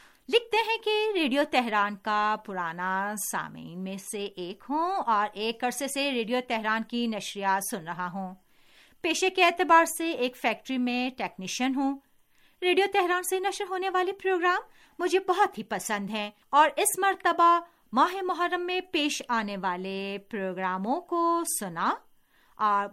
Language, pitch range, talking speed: Urdu, 205-335 Hz, 145 wpm